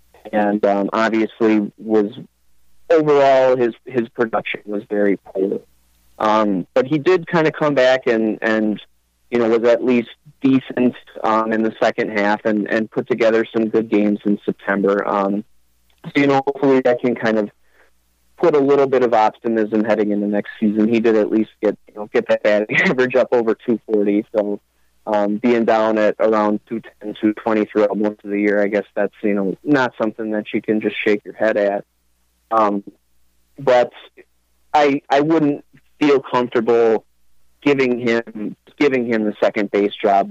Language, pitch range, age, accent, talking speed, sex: English, 100-120 Hz, 30-49, American, 175 wpm, male